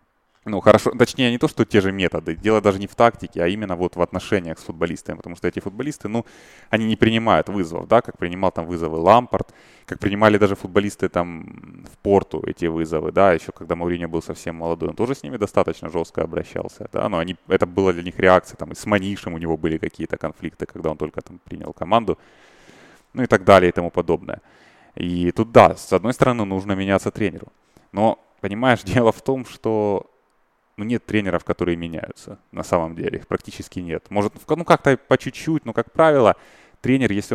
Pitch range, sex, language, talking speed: 85-110 Hz, male, Russian, 200 wpm